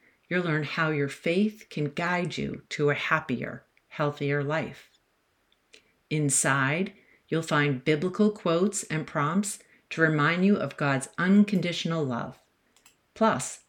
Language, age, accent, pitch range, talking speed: English, 50-69, American, 145-185 Hz, 125 wpm